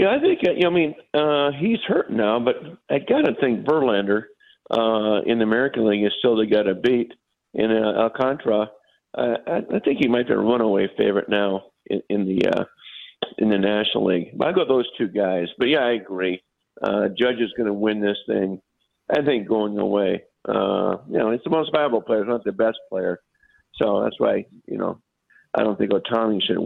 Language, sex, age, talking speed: English, male, 50-69, 205 wpm